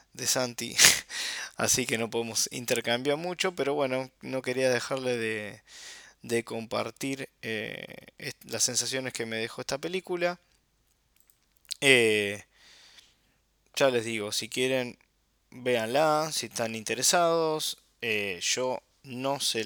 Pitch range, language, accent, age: 110-140 Hz, Spanish, Argentinian, 20-39